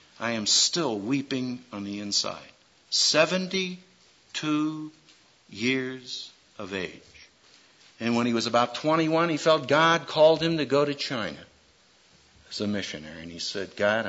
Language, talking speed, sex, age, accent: English, 140 wpm, male, 60-79, American